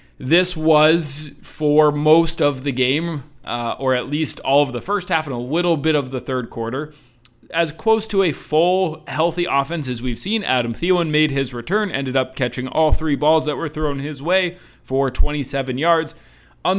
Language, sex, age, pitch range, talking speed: English, male, 30-49, 135-175 Hz, 195 wpm